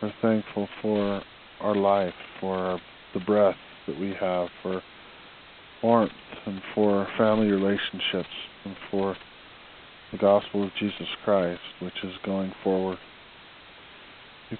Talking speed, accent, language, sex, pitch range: 125 wpm, American, English, male, 95-110 Hz